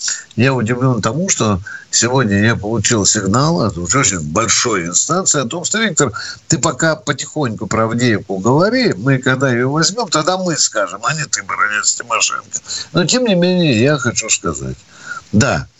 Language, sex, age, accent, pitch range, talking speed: Russian, male, 60-79, native, 115-175 Hz, 160 wpm